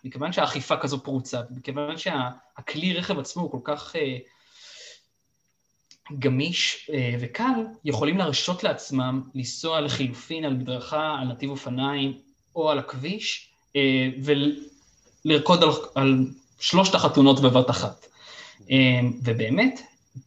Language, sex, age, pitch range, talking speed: Hebrew, male, 20-39, 130-160 Hz, 120 wpm